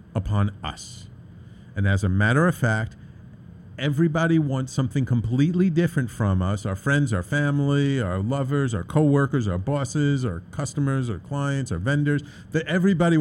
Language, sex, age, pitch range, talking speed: English, male, 50-69, 105-145 Hz, 150 wpm